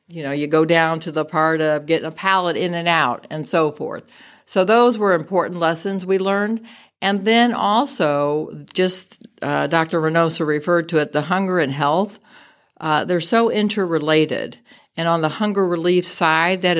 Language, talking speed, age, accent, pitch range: English, 180 wpm, 60-79, American, 150-190 Hz